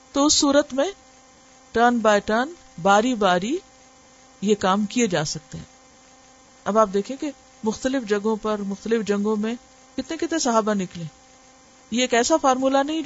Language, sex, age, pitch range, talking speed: Urdu, female, 50-69, 205-260 Hz, 155 wpm